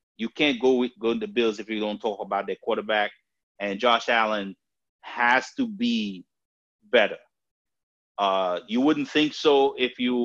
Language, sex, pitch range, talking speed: English, male, 100-135 Hz, 170 wpm